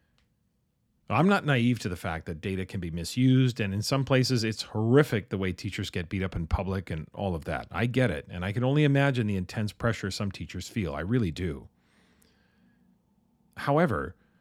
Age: 40-59